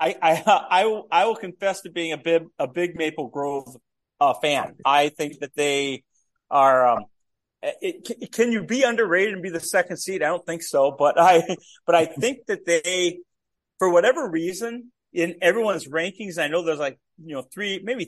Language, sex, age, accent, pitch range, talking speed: English, male, 40-59, American, 140-180 Hz, 200 wpm